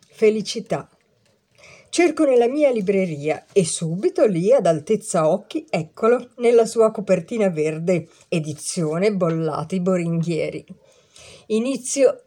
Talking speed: 100 wpm